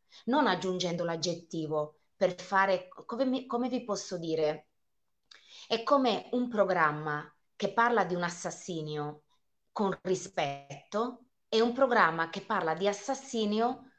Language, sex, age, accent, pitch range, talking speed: Italian, female, 20-39, native, 165-225 Hz, 125 wpm